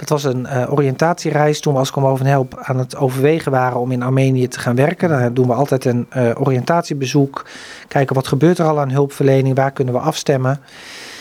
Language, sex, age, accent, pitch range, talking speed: Dutch, male, 40-59, Dutch, 135-155 Hz, 210 wpm